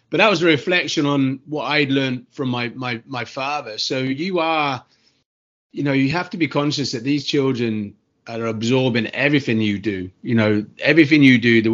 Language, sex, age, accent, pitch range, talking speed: English, male, 30-49, British, 110-135 Hz, 195 wpm